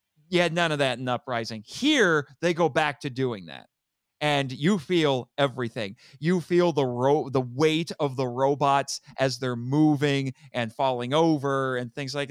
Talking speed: 180 wpm